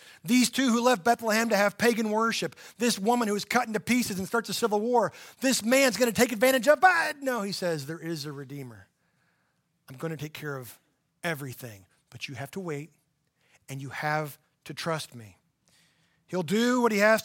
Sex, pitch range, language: male, 165-225 Hz, English